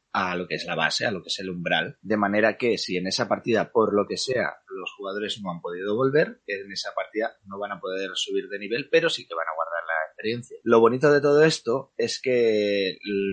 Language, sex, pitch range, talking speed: Spanish, male, 100-130 Hz, 250 wpm